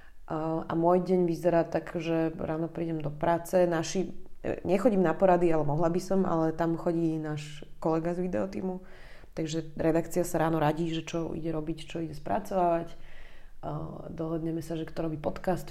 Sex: female